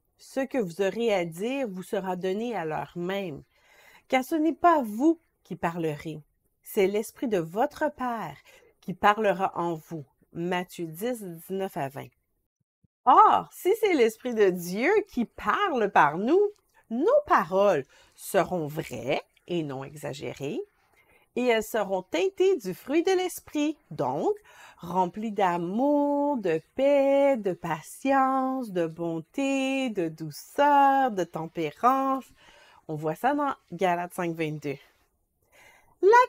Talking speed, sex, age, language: 130 wpm, female, 50-69, French